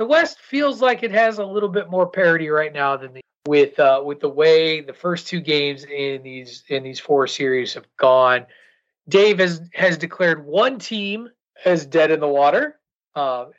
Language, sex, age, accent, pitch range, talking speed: English, male, 30-49, American, 135-210 Hz, 195 wpm